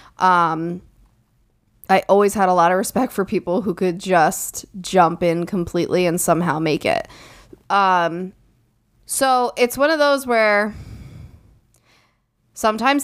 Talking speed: 130 wpm